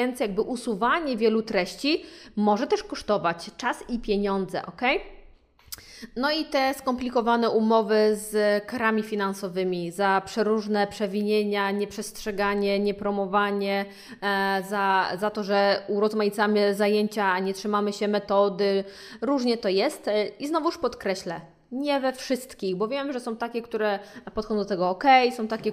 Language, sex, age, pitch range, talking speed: Polish, female, 20-39, 205-255 Hz, 130 wpm